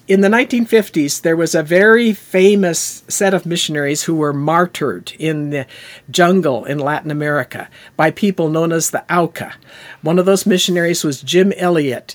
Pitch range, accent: 155-205 Hz, American